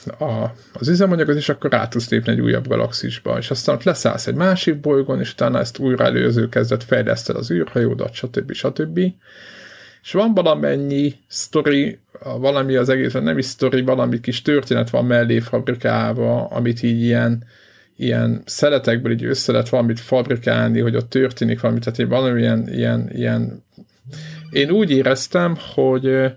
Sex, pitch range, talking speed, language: male, 115-135 Hz, 155 wpm, Hungarian